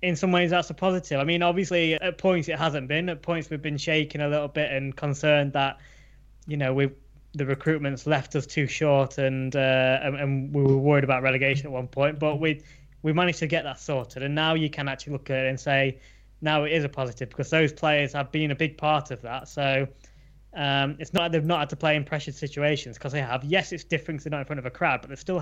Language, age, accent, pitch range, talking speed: English, 20-39, British, 130-155 Hz, 255 wpm